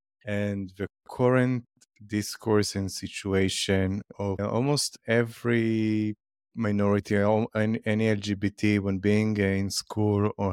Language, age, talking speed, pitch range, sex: English, 30-49, 95 wpm, 100-110 Hz, male